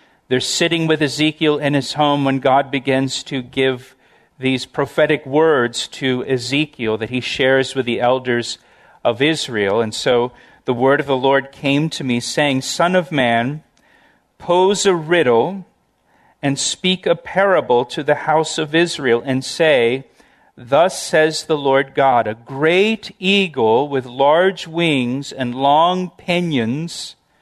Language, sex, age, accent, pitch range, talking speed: English, male, 50-69, American, 135-170 Hz, 145 wpm